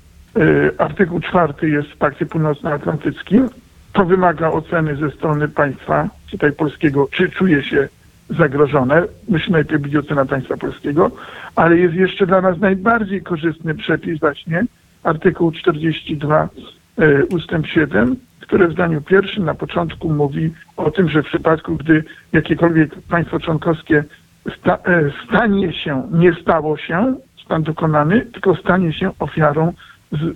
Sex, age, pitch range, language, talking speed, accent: male, 50-69, 150-175 Hz, Polish, 135 wpm, native